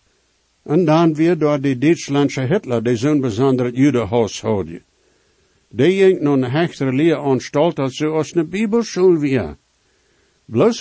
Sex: male